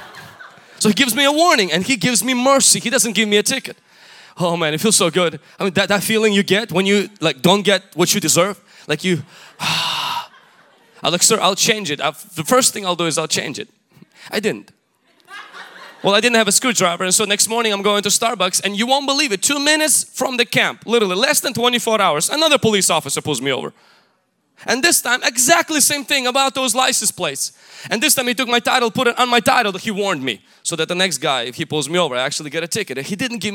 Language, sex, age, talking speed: English, male, 20-39, 245 wpm